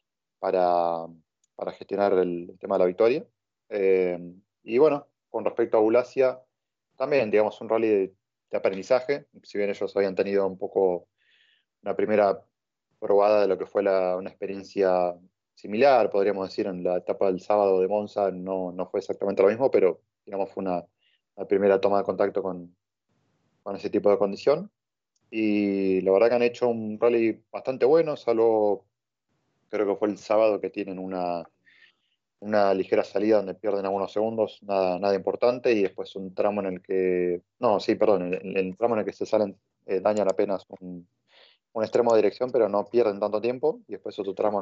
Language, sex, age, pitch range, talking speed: Spanish, male, 30-49, 95-110 Hz, 180 wpm